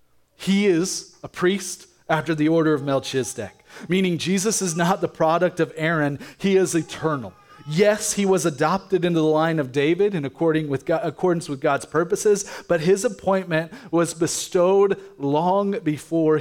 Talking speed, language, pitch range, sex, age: 150 wpm, English, 135-180 Hz, male, 30-49